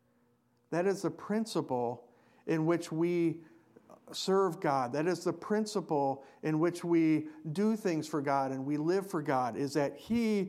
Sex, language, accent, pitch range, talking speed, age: male, English, American, 145-195 Hz, 160 wpm, 50-69